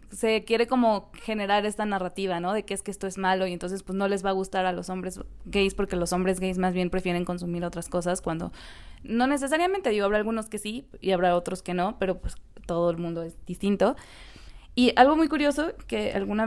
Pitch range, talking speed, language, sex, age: 180-215 Hz, 225 wpm, Spanish, female, 20-39